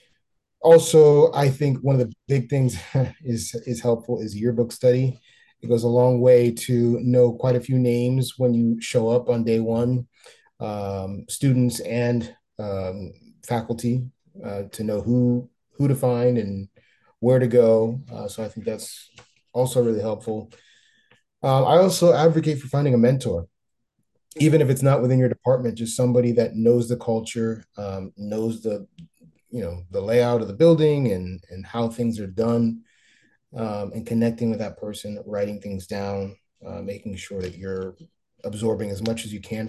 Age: 30-49